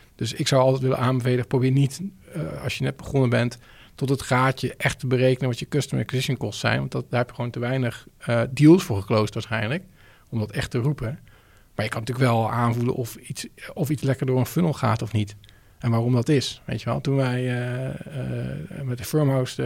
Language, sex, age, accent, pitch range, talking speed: Dutch, male, 40-59, Dutch, 115-145 Hz, 230 wpm